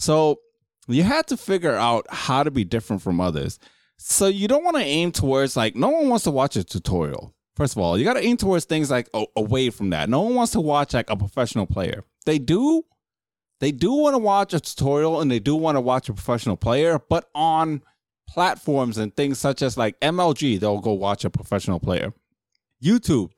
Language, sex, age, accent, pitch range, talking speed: English, male, 20-39, American, 110-160 Hz, 215 wpm